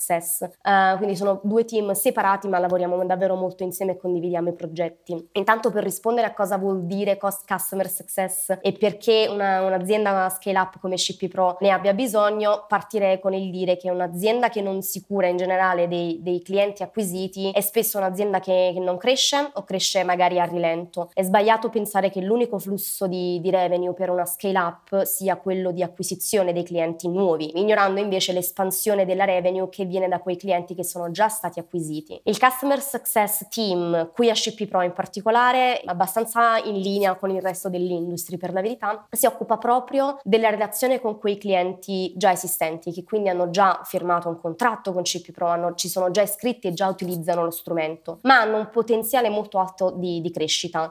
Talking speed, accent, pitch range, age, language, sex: 190 wpm, native, 180-205 Hz, 20-39, Italian, female